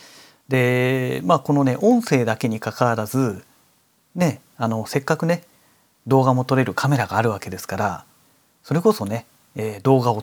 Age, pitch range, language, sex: 40-59, 110-155 Hz, Japanese, male